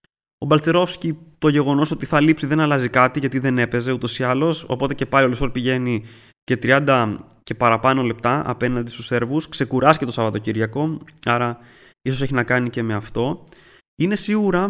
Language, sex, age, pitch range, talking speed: Greek, male, 20-39, 120-160 Hz, 180 wpm